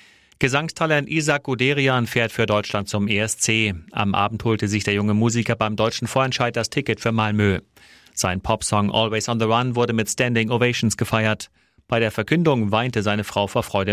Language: German